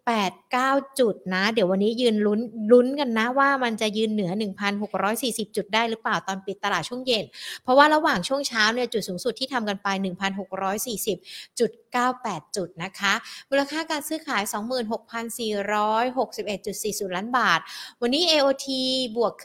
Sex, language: female, Thai